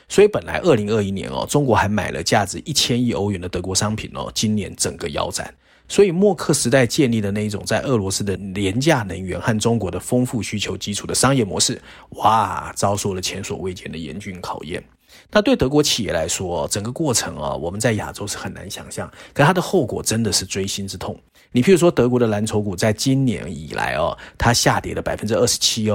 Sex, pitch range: male, 95-130 Hz